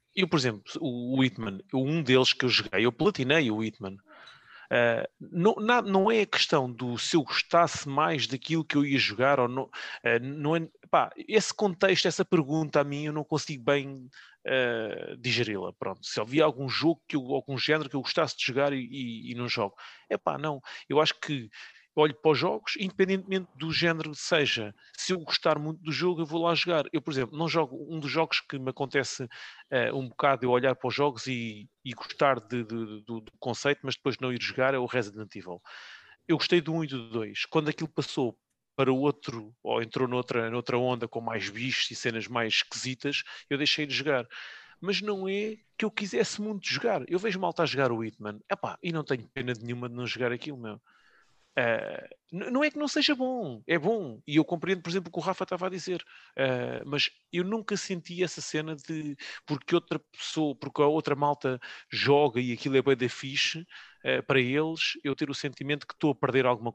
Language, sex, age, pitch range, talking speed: English, male, 30-49, 125-165 Hz, 205 wpm